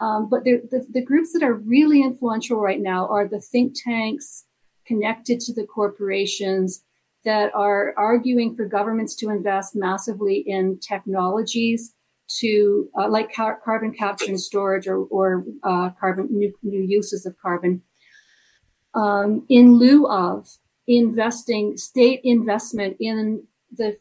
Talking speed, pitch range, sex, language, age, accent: 140 wpm, 200-235 Hz, female, English, 40-59, American